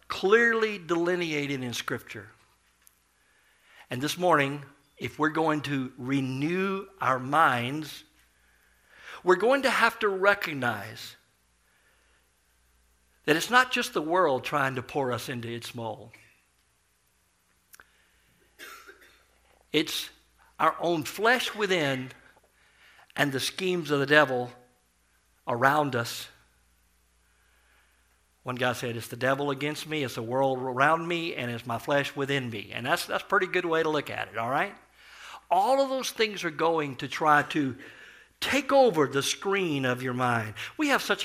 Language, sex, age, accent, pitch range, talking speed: English, male, 60-79, American, 115-155 Hz, 140 wpm